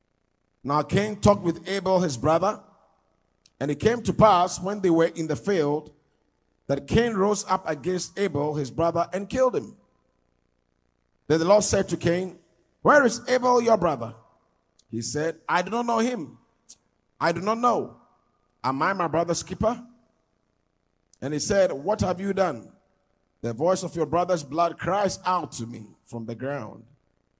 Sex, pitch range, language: male, 140-195 Hz, English